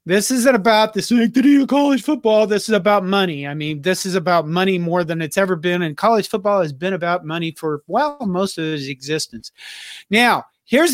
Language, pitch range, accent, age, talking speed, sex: English, 180-250 Hz, American, 40-59, 210 wpm, male